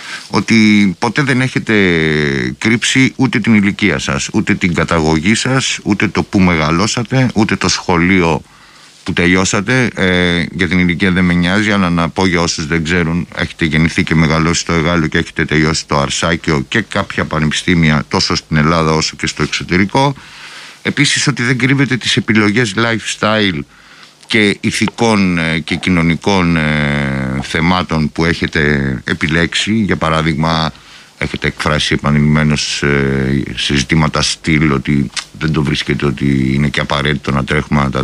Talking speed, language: 145 wpm, Greek